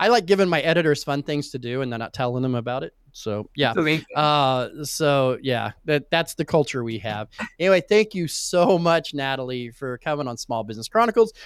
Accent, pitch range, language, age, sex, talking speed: American, 125-175 Hz, English, 30-49, male, 200 wpm